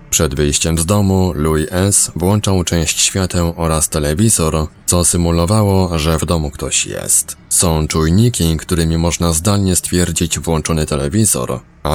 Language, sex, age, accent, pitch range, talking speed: Polish, male, 20-39, native, 80-95 Hz, 135 wpm